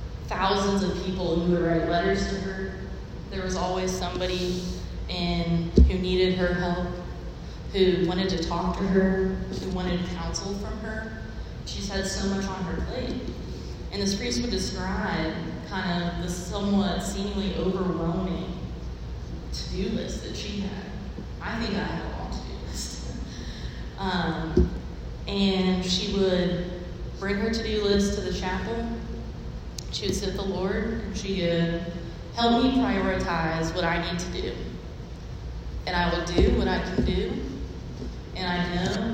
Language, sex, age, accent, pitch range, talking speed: English, female, 20-39, American, 170-195 Hz, 155 wpm